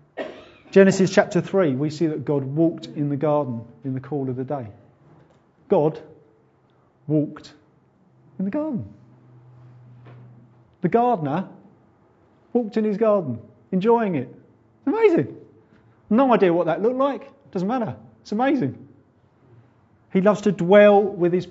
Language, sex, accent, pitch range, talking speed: English, male, British, 125-155 Hz, 130 wpm